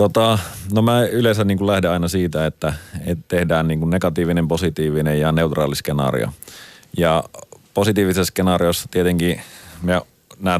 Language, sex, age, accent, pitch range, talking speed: Finnish, male, 30-49, native, 75-90 Hz, 100 wpm